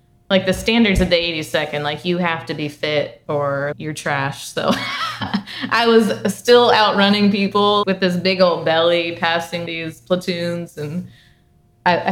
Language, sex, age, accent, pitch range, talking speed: English, female, 20-39, American, 150-185 Hz, 160 wpm